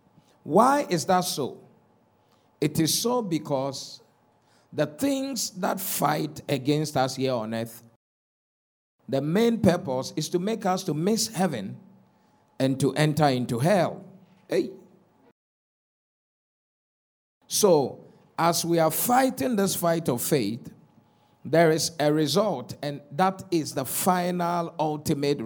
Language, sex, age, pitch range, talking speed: English, male, 50-69, 135-180 Hz, 120 wpm